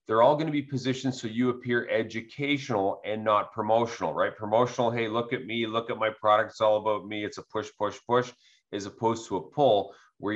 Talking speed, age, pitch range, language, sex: 220 wpm, 40-59, 115-135 Hz, English, male